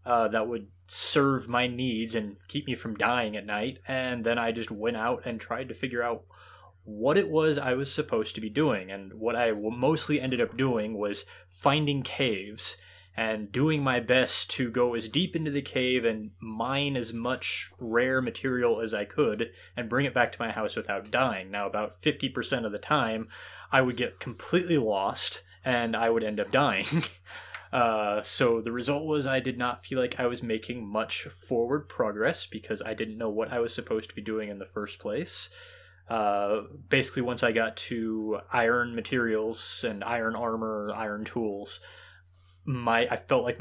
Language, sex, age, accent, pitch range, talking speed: English, male, 20-39, American, 105-125 Hz, 190 wpm